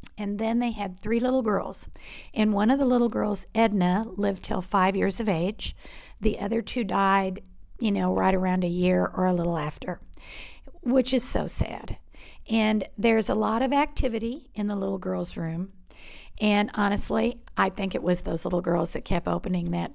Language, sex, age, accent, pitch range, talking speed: English, female, 50-69, American, 185-230 Hz, 185 wpm